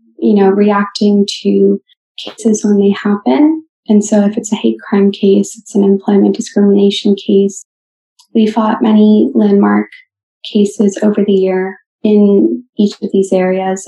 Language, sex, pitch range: English, female, 195-215 Hz